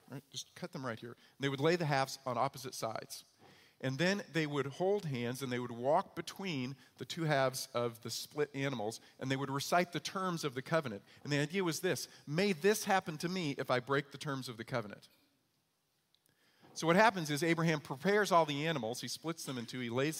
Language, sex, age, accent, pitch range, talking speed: English, male, 40-59, American, 135-185 Hz, 225 wpm